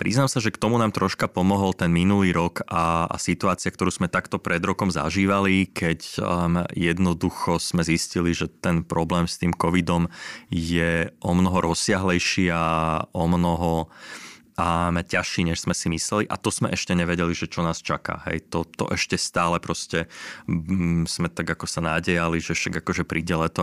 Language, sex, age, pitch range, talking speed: Slovak, male, 20-39, 85-90 Hz, 175 wpm